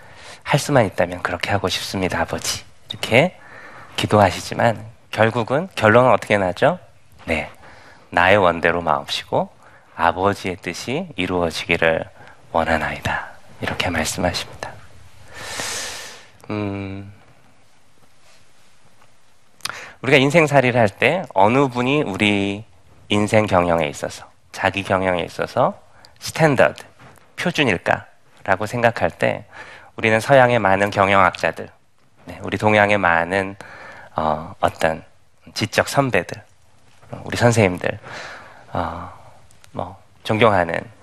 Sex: male